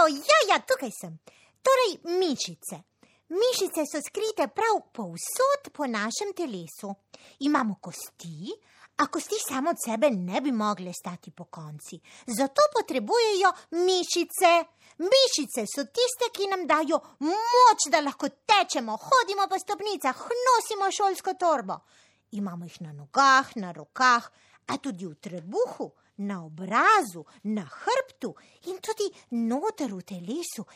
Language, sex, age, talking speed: Italian, female, 30-49, 135 wpm